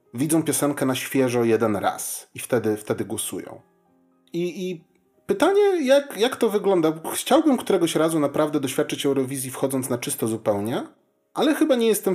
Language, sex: Polish, male